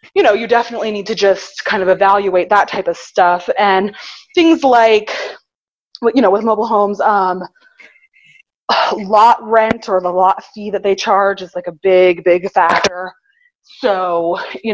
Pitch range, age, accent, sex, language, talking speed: 175-225 Hz, 20-39, American, female, English, 165 wpm